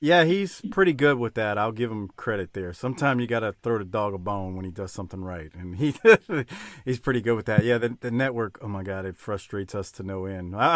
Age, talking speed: 40-59, 255 wpm